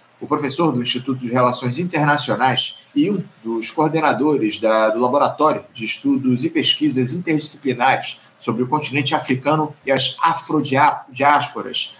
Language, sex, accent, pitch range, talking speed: Portuguese, male, Brazilian, 130-155 Hz, 125 wpm